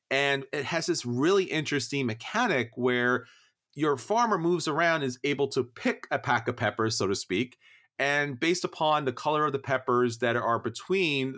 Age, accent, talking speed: 40-59, American, 185 wpm